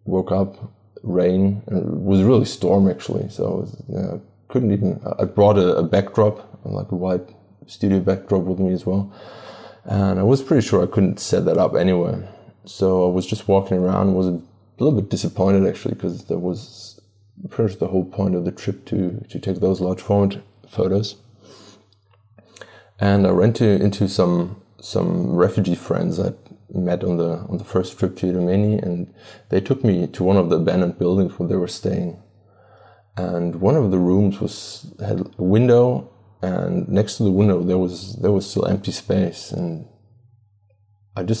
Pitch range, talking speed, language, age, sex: 90-105 Hz, 185 wpm, English, 20-39, male